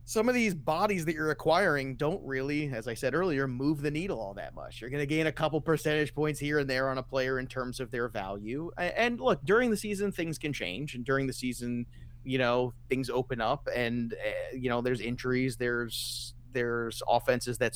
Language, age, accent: English, 30-49, American